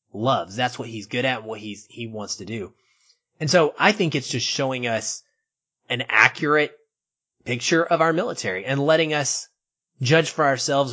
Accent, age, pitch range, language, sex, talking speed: American, 30-49, 120-155 Hz, English, male, 175 wpm